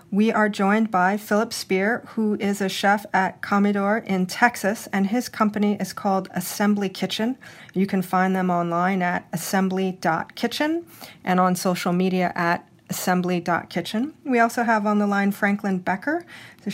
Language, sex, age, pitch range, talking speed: English, female, 40-59, 180-210 Hz, 155 wpm